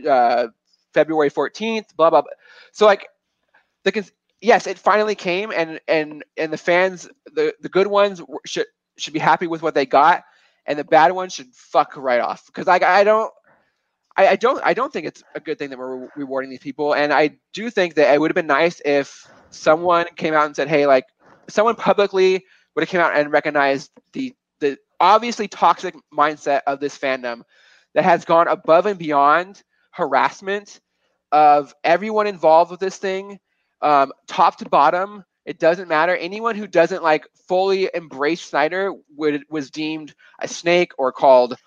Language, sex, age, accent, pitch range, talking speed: English, male, 20-39, American, 150-190 Hz, 185 wpm